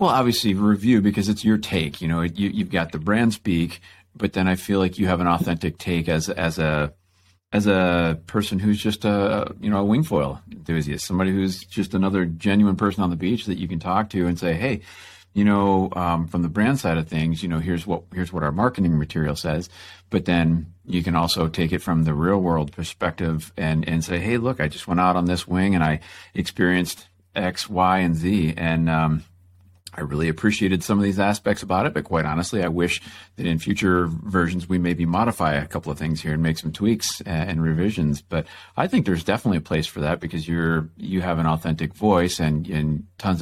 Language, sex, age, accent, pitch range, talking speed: English, male, 40-59, American, 80-95 Hz, 220 wpm